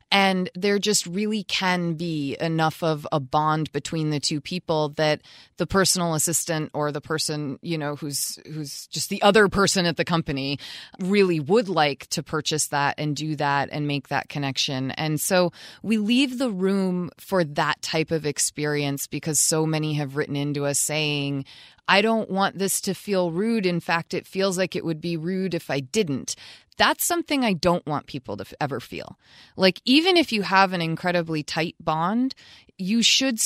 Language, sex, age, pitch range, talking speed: English, female, 20-39, 150-190 Hz, 185 wpm